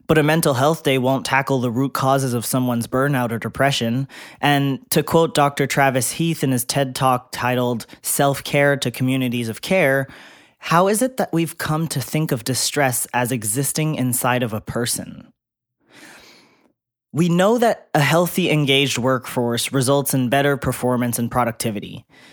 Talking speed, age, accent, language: 160 wpm, 20-39, American, English